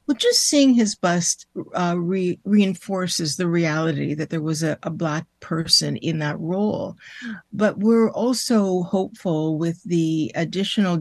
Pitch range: 170-215 Hz